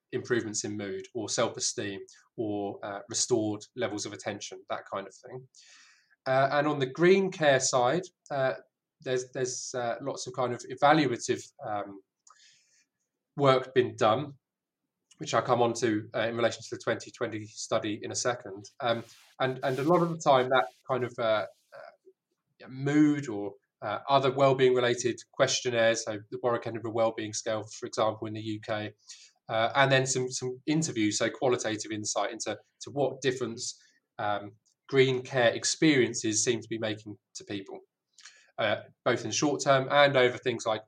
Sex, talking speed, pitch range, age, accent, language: male, 170 wpm, 115-145 Hz, 20-39, British, English